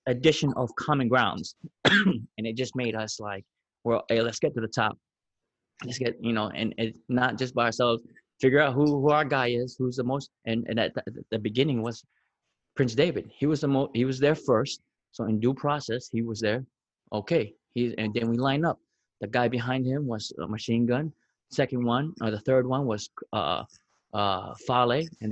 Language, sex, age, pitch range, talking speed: English, male, 20-39, 110-145 Hz, 205 wpm